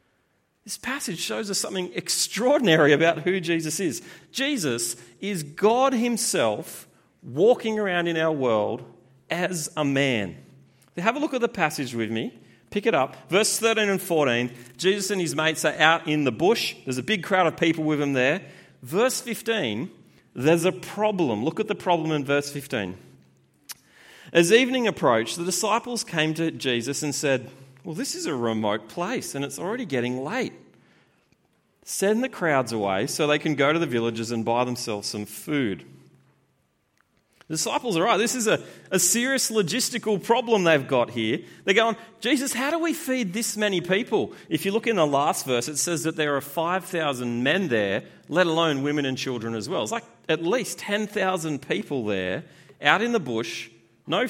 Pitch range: 135-215 Hz